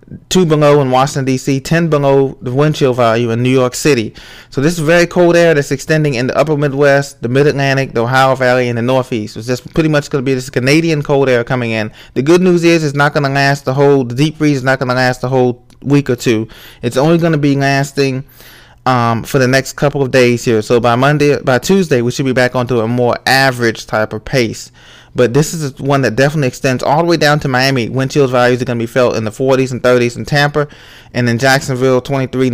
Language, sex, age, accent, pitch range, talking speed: English, male, 20-39, American, 120-150 Hz, 245 wpm